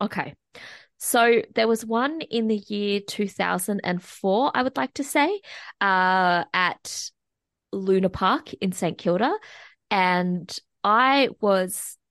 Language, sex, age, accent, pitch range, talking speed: English, female, 20-39, Australian, 165-225 Hz, 120 wpm